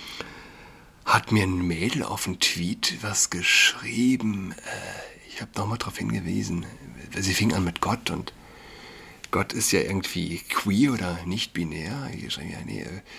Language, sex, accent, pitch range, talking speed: German, male, German, 95-115 Hz, 130 wpm